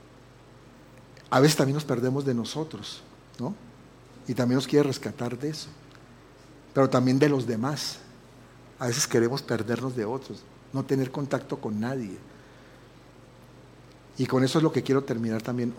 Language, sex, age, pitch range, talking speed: Spanish, male, 60-79, 120-150 Hz, 150 wpm